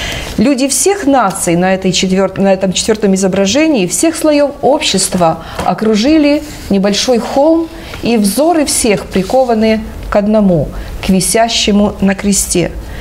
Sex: female